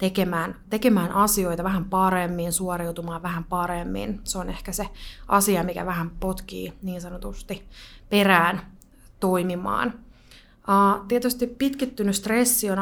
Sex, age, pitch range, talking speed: female, 20-39, 185-210 Hz, 110 wpm